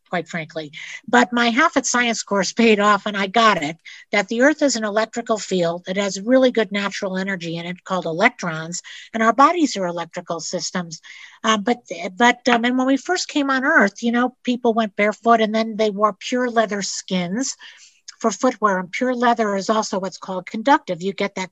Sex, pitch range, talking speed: female, 190-240 Hz, 205 wpm